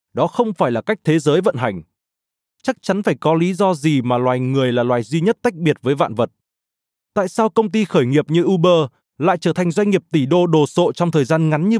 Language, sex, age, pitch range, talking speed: Vietnamese, male, 20-39, 130-190 Hz, 255 wpm